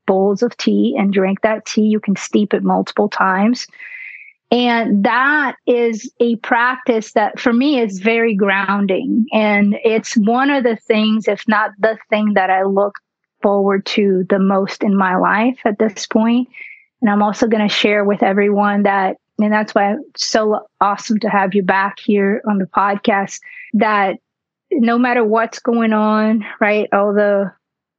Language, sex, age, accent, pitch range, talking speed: English, female, 30-49, American, 200-230 Hz, 170 wpm